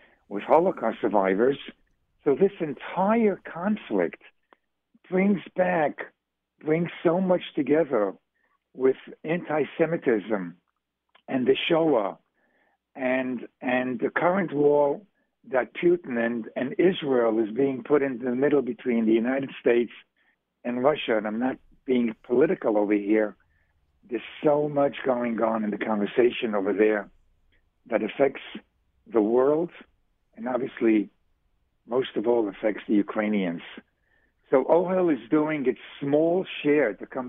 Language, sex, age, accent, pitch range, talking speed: English, male, 60-79, American, 110-150 Hz, 125 wpm